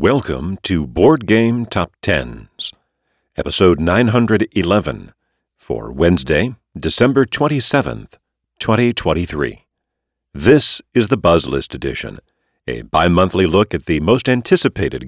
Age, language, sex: 50-69, English, male